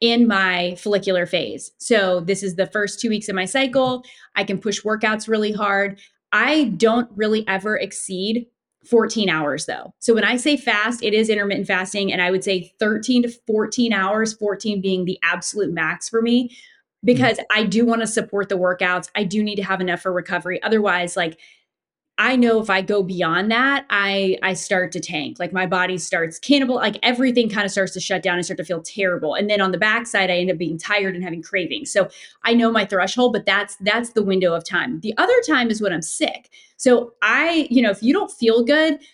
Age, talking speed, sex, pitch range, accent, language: 20-39, 215 wpm, female, 185-235 Hz, American, English